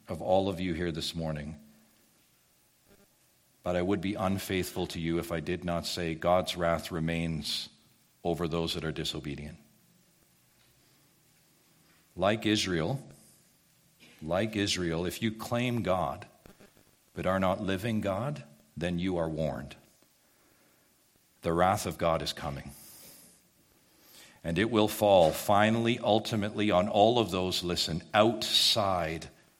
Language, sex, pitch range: English, male, 90-120 Hz